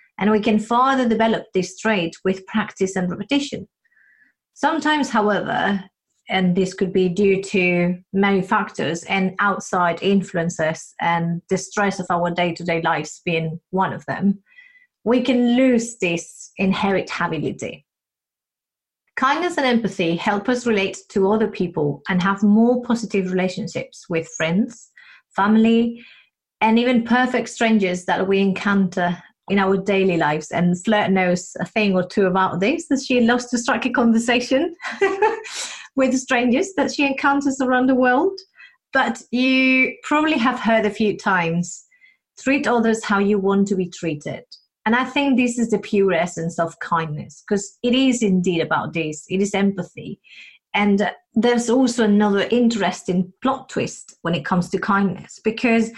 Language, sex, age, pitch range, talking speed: English, female, 30-49, 185-250 Hz, 150 wpm